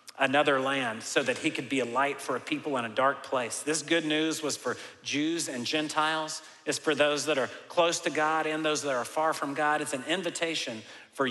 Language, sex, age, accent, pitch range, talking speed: English, male, 40-59, American, 130-160 Hz, 230 wpm